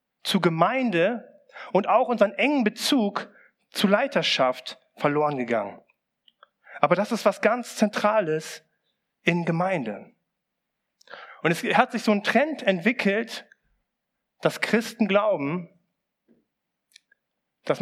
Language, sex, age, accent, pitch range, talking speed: German, male, 40-59, German, 150-215 Hz, 105 wpm